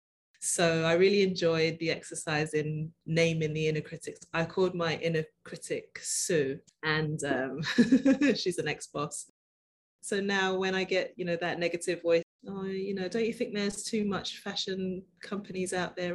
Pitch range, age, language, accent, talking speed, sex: 155-180 Hz, 20-39, English, British, 165 wpm, female